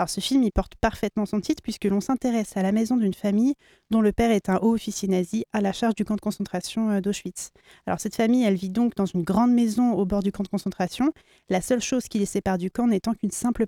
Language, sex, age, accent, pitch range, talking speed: French, female, 30-49, French, 200-235 Hz, 260 wpm